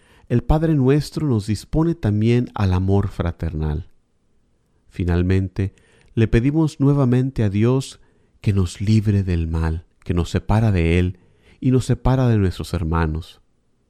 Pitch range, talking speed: 95-120 Hz, 135 wpm